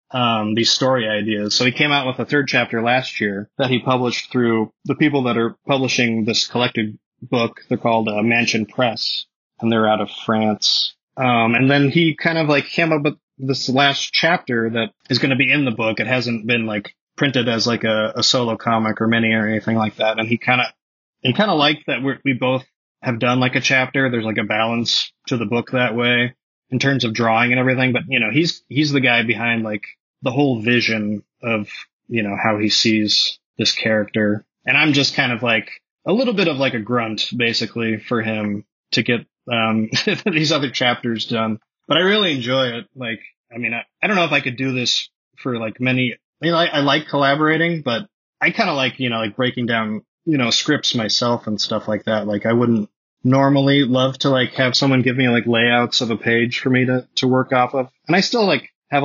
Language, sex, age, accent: English, male, 20-39, American